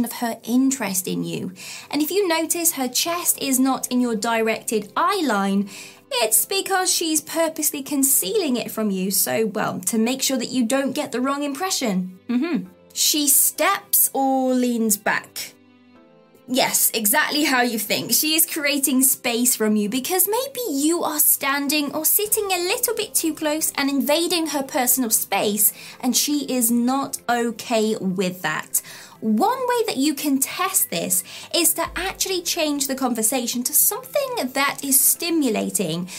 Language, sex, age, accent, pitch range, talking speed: English, female, 20-39, British, 225-320 Hz, 160 wpm